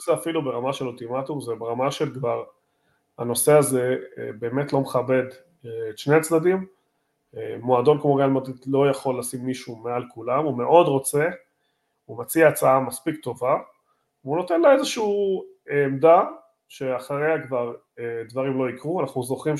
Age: 30-49